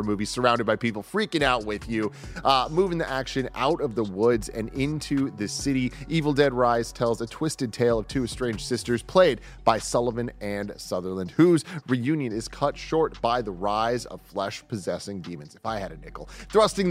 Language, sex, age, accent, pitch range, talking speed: English, male, 30-49, American, 105-140 Hz, 190 wpm